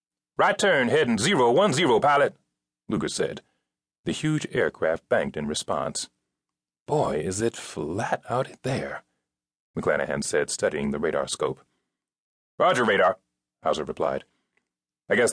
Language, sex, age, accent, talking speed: English, male, 40-59, American, 130 wpm